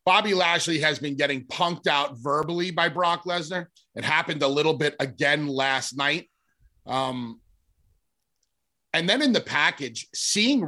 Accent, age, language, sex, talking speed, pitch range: American, 30-49, English, male, 145 wpm, 140-175 Hz